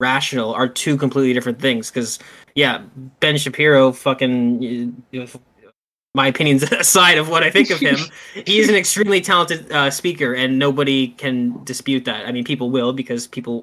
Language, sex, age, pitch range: English, male, 20-39, 130-150 Hz